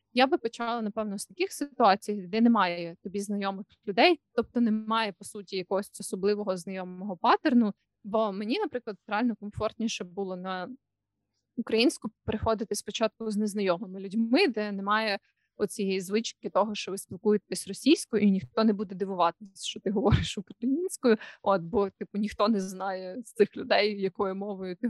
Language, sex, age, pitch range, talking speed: Ukrainian, female, 20-39, 200-235 Hz, 150 wpm